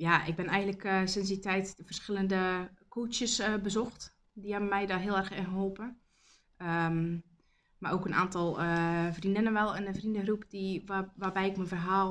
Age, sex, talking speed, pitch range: 20-39, female, 190 wpm, 170-195 Hz